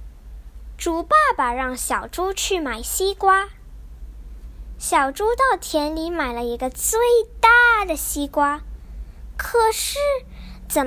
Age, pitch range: 10-29, 235-390 Hz